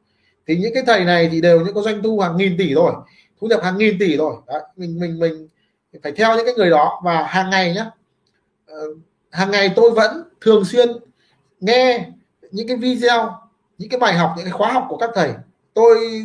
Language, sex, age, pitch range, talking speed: Vietnamese, male, 20-39, 175-230 Hz, 210 wpm